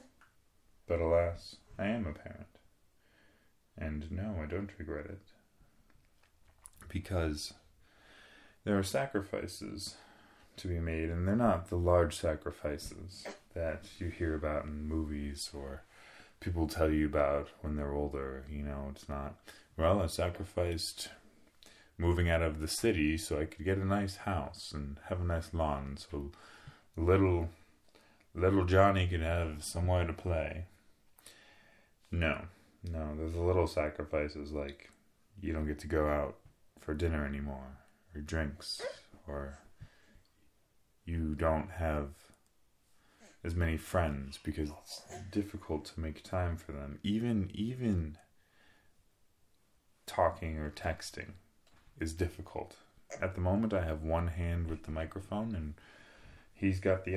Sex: male